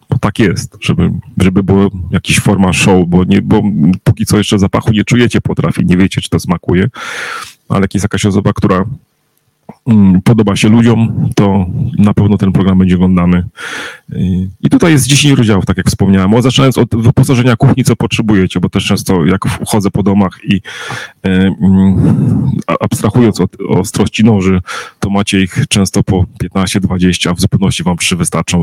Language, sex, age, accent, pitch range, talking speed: Polish, male, 30-49, native, 95-110 Hz, 165 wpm